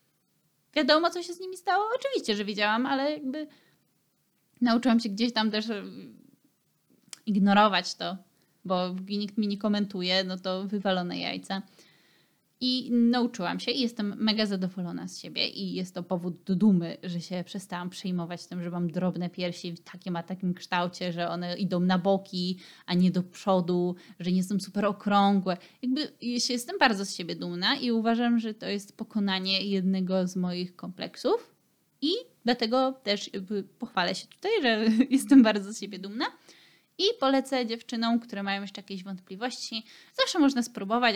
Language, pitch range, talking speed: Polish, 185-240 Hz, 160 wpm